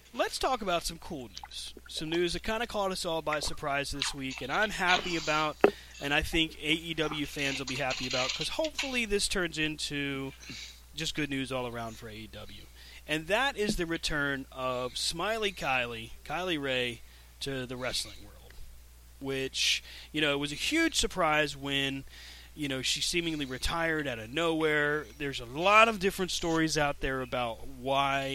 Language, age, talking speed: English, 30-49, 180 wpm